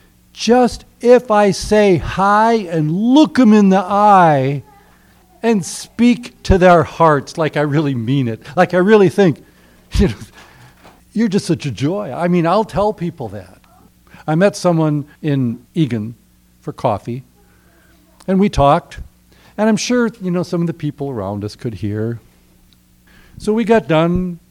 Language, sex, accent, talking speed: English, male, American, 155 wpm